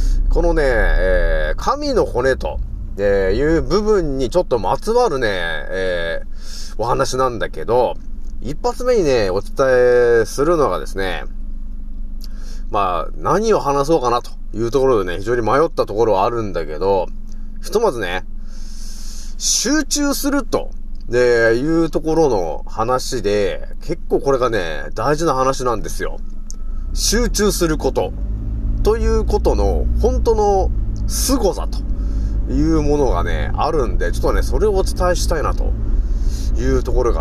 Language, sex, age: Japanese, male, 30-49